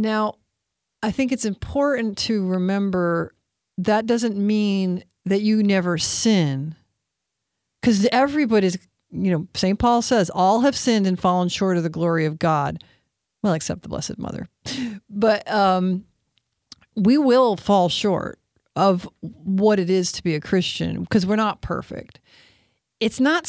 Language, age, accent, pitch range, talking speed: English, 40-59, American, 180-230 Hz, 145 wpm